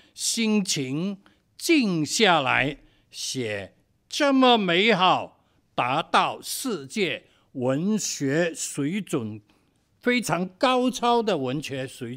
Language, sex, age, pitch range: Chinese, male, 60-79, 140-215 Hz